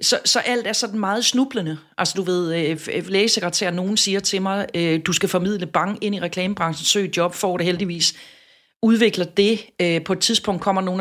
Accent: native